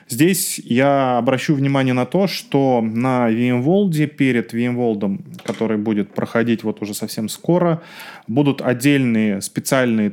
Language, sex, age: Russian, male, 20-39